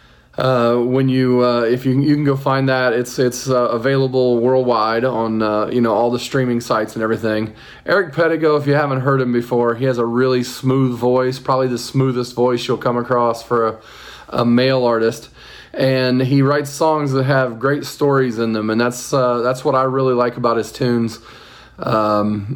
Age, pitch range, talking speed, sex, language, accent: 40-59, 120-140 Hz, 195 wpm, male, English, American